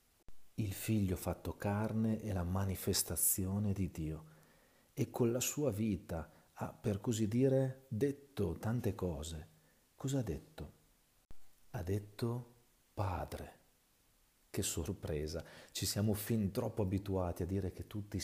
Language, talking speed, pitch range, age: Italian, 125 wpm, 90-115 Hz, 40-59